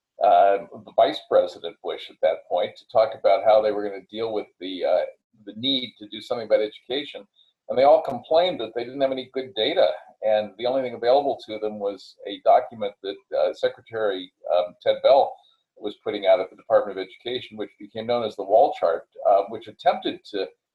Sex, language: male, English